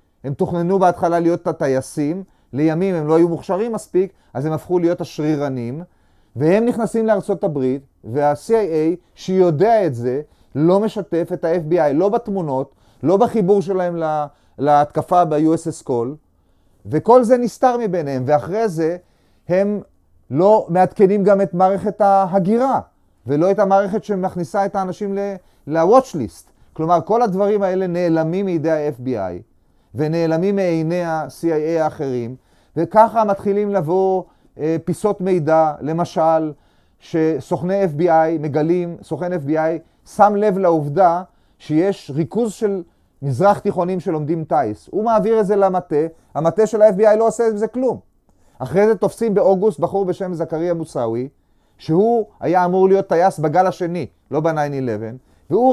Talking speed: 130 wpm